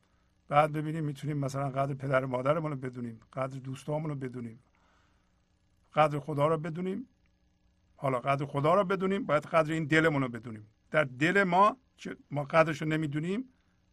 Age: 50-69